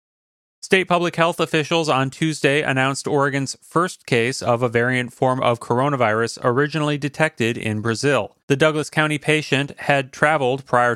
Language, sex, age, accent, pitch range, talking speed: English, male, 30-49, American, 115-140 Hz, 150 wpm